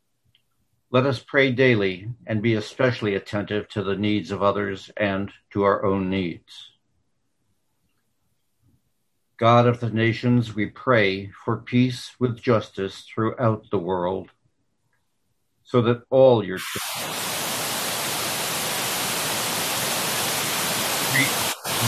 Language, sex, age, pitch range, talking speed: English, male, 60-79, 100-120 Hz, 100 wpm